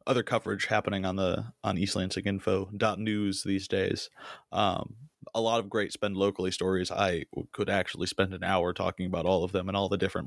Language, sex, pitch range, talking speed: English, male, 95-105 Hz, 205 wpm